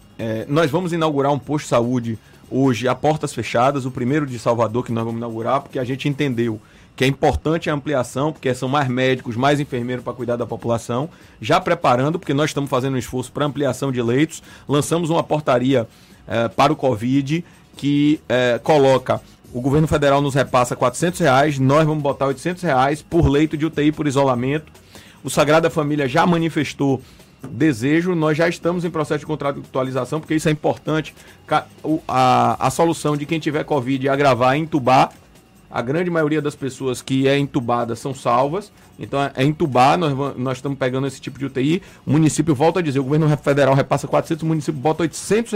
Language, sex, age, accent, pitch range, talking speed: Portuguese, male, 30-49, Brazilian, 130-155 Hz, 185 wpm